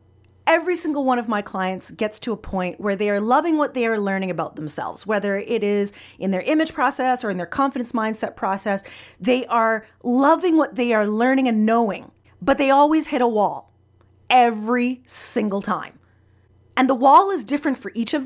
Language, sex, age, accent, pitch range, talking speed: English, female, 30-49, American, 200-300 Hz, 195 wpm